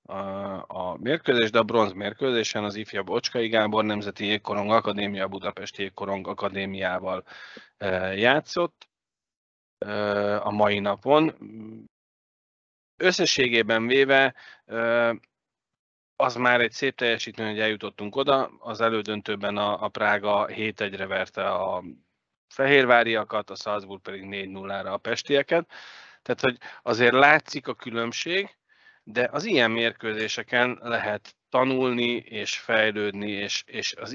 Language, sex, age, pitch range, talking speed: Hungarian, male, 30-49, 105-125 Hz, 105 wpm